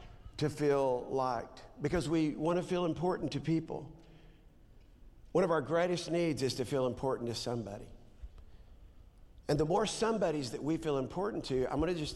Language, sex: English, male